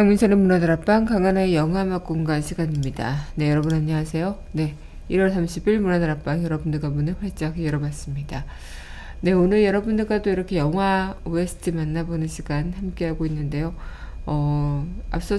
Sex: female